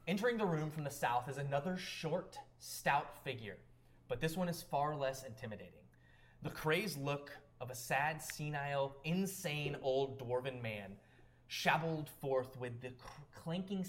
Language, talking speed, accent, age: English, 145 wpm, American, 20-39